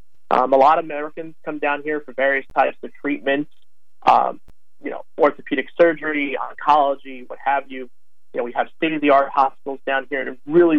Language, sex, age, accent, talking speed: English, male, 40-59, American, 180 wpm